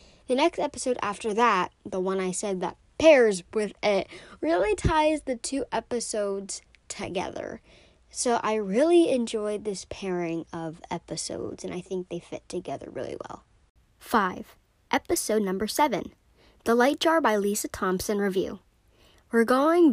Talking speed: 145 wpm